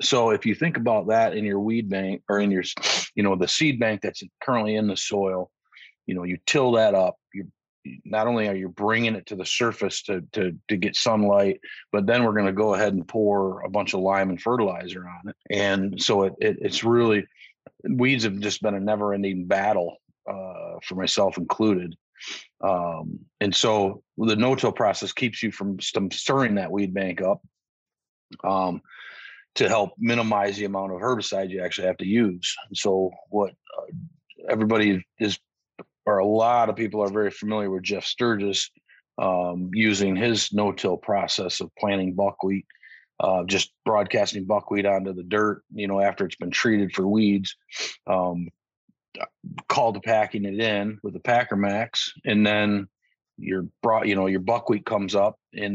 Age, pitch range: 40-59, 95-110 Hz